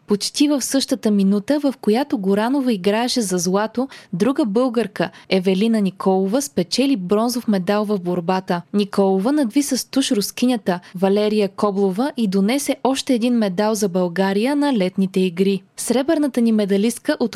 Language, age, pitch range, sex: Bulgarian, 20-39, 195-245 Hz, female